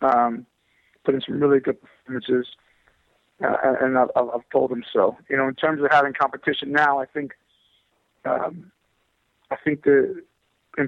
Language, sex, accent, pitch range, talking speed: English, male, American, 130-145 Hz, 160 wpm